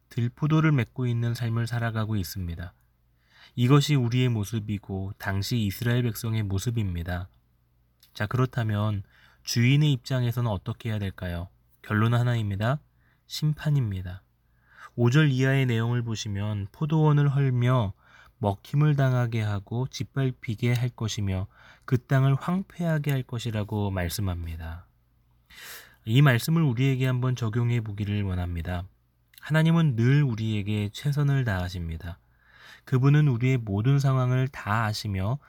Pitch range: 100-130 Hz